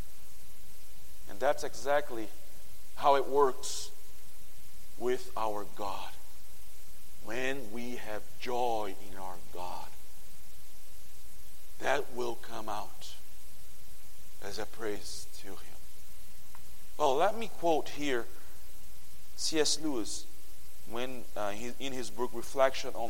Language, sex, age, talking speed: English, male, 40-59, 100 wpm